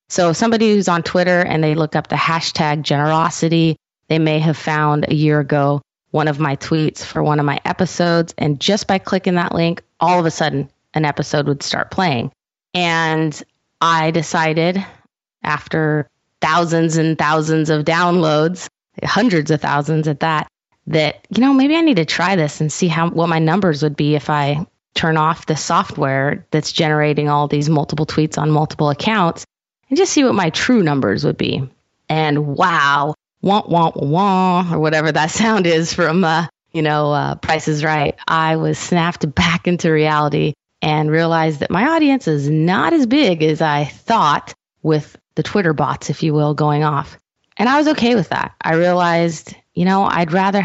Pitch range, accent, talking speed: 150-175 Hz, American, 185 wpm